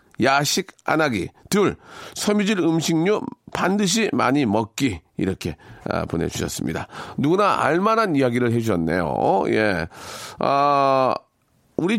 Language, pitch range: Korean, 135-200 Hz